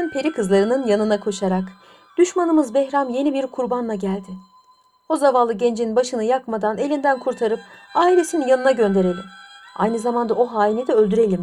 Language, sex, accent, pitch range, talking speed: Turkish, female, native, 190-285 Hz, 135 wpm